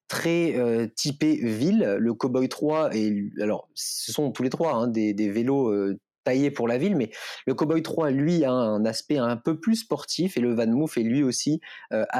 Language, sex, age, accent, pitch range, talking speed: French, male, 30-49, French, 110-150 Hz, 205 wpm